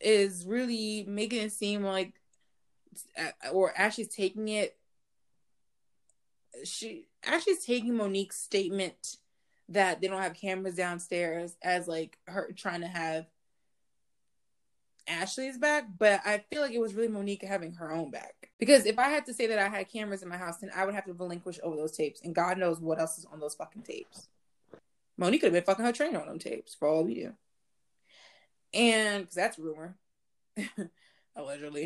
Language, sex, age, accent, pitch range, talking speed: English, female, 20-39, American, 170-220 Hz, 175 wpm